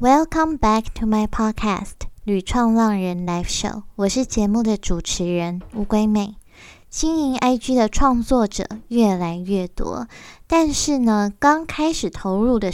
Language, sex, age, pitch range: Chinese, female, 10-29, 190-240 Hz